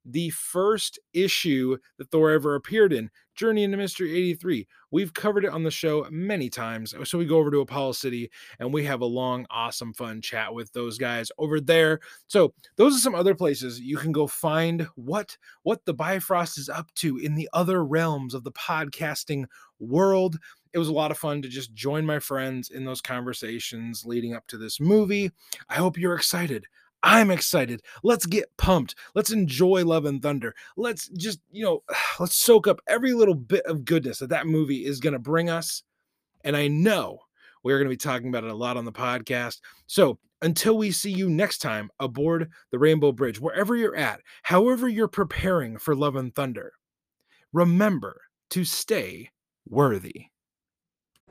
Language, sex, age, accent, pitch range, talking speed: English, male, 20-39, American, 130-180 Hz, 185 wpm